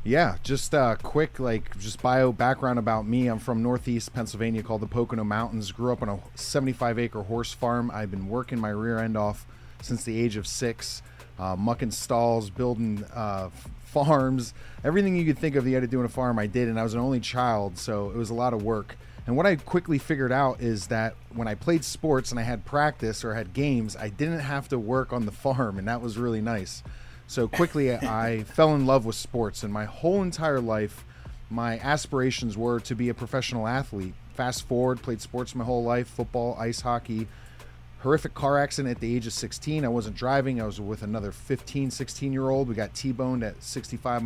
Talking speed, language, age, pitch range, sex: 215 wpm, English, 30-49, 110-130 Hz, male